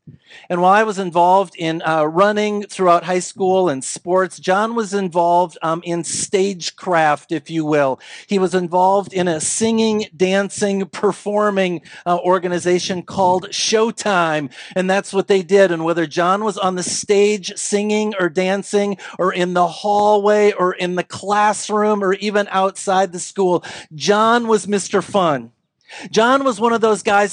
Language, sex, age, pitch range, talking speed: English, male, 40-59, 175-205 Hz, 160 wpm